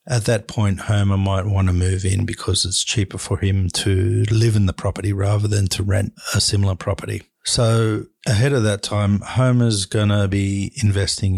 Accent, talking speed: Australian, 190 wpm